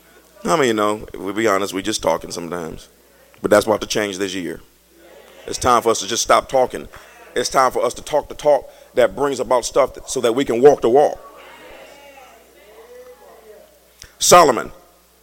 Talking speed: 185 wpm